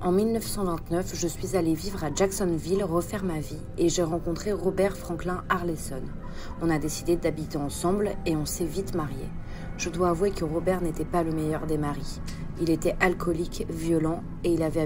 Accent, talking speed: French, 180 wpm